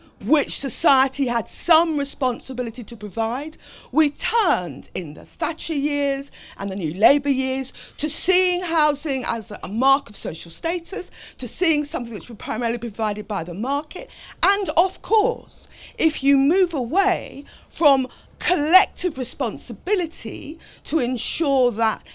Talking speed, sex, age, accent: 135 wpm, female, 50-69, British